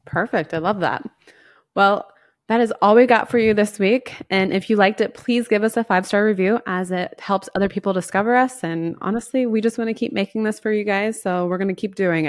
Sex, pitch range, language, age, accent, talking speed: female, 150-195 Hz, English, 20-39, American, 245 wpm